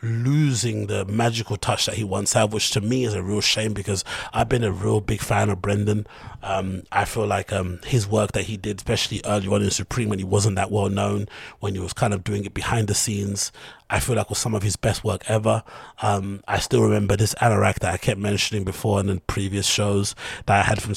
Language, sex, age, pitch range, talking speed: English, male, 30-49, 100-110 Hz, 240 wpm